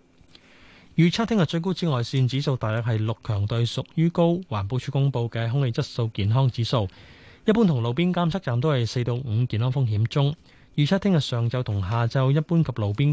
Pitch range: 110-150 Hz